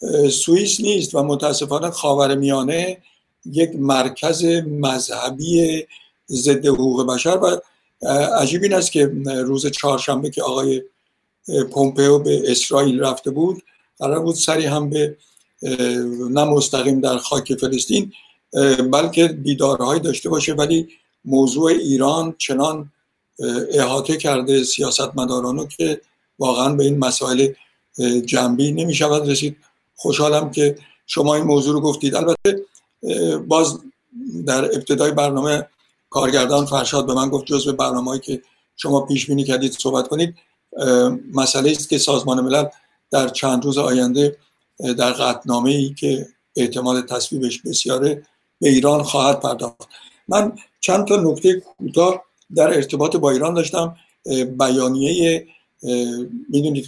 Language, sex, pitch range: Persian, male, 135-155 Hz